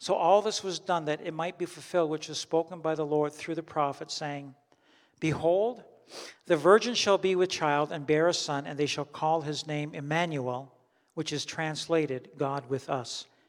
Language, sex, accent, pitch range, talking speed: English, male, American, 145-175 Hz, 195 wpm